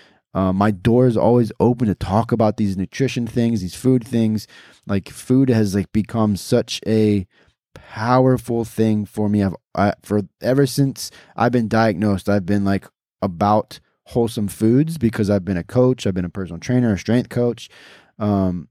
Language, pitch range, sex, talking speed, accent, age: English, 100-115 Hz, male, 175 wpm, American, 20-39